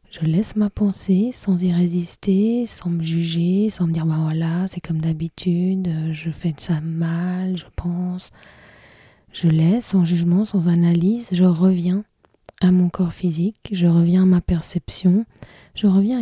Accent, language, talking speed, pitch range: French, French, 165 wpm, 170-195 Hz